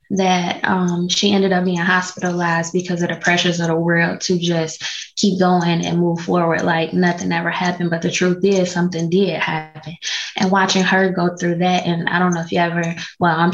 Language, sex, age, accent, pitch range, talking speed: English, female, 20-39, American, 170-190 Hz, 205 wpm